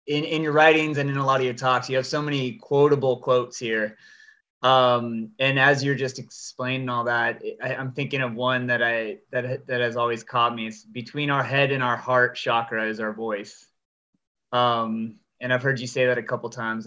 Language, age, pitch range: English, 20-39, 120-145 Hz